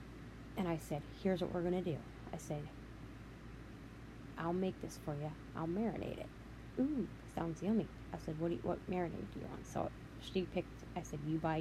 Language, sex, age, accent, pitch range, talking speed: English, female, 20-39, American, 145-175 Hz, 190 wpm